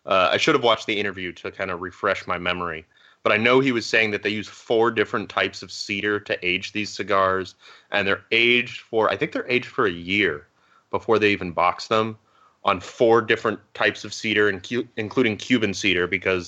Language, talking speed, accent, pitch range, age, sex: English, 210 wpm, American, 95-110 Hz, 30-49, male